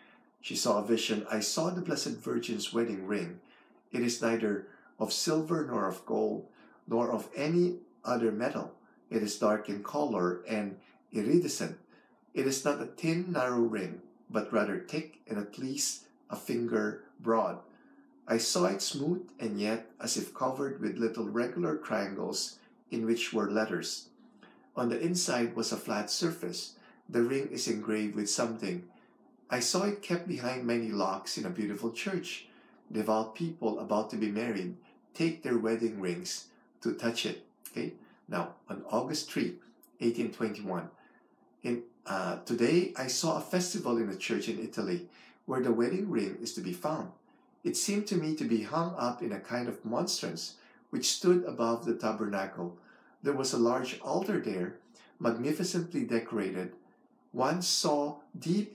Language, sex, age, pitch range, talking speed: English, male, 50-69, 110-160 Hz, 155 wpm